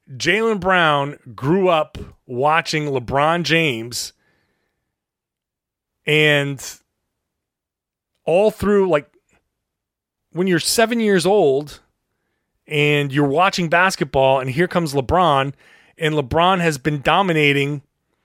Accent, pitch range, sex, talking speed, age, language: American, 140-190 Hz, male, 95 wpm, 30-49, English